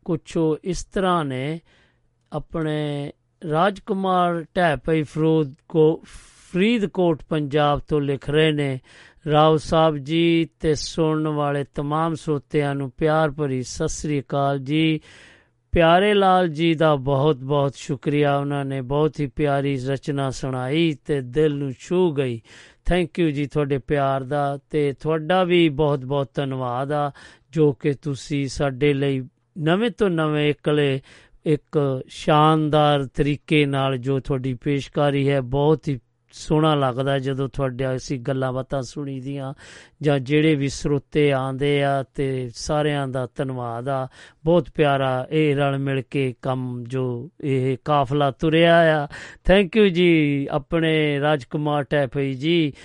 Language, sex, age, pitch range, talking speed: Punjabi, male, 50-69, 135-155 Hz, 135 wpm